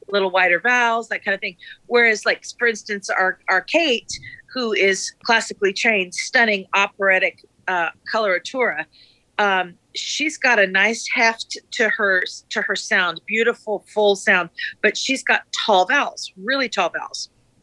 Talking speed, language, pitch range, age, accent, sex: 150 wpm, English, 205-245 Hz, 40-59, American, female